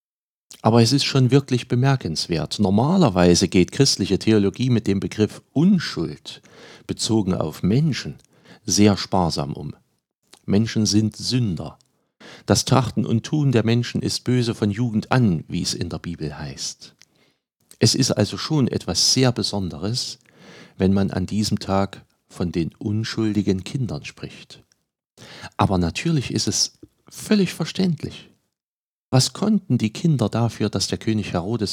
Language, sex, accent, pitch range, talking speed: German, male, German, 100-130 Hz, 135 wpm